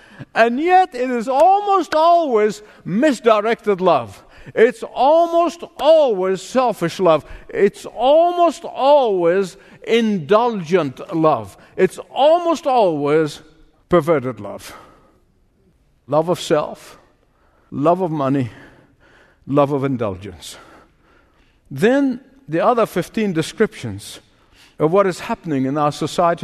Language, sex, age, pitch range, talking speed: English, male, 50-69, 160-240 Hz, 100 wpm